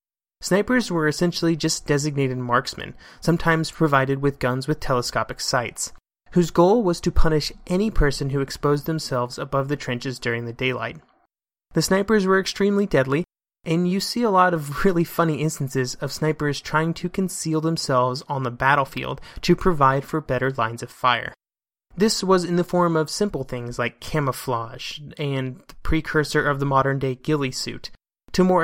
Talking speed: 165 wpm